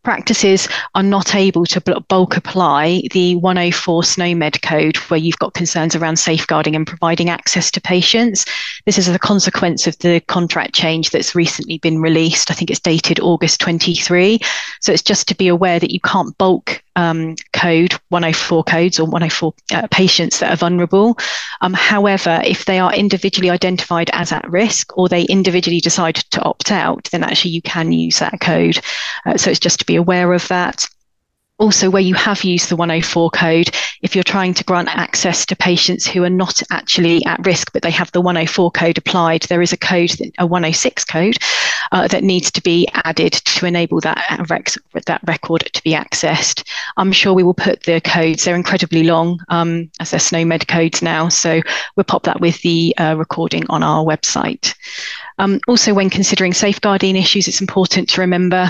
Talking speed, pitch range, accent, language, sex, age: 185 wpm, 165-185 Hz, British, English, female, 30-49